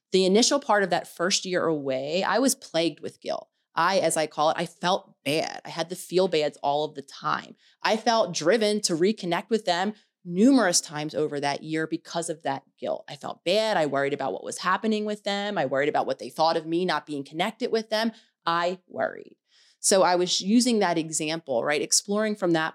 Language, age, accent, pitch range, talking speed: English, 30-49, American, 155-210 Hz, 215 wpm